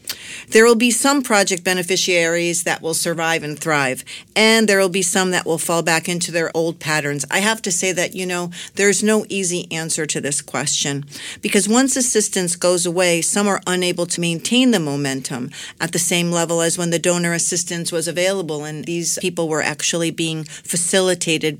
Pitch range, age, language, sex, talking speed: 165-195 Hz, 50-69, English, female, 190 wpm